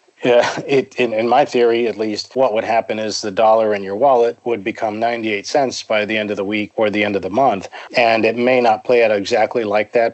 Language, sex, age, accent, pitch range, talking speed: English, male, 40-59, American, 105-120 Hz, 245 wpm